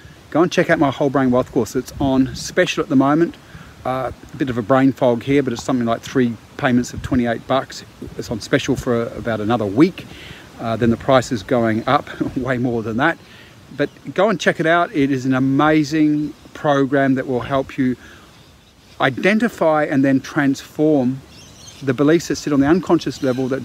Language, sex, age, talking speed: English, male, 40-59, 200 wpm